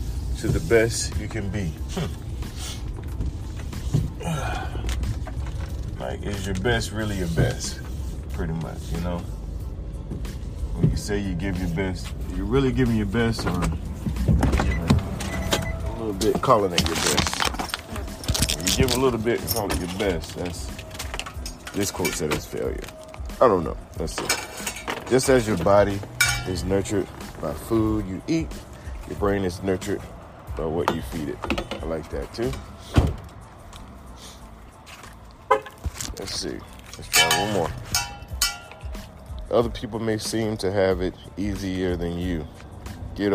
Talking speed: 135 wpm